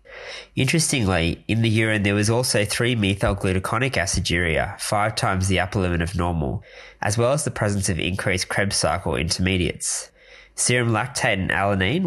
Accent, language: Australian, English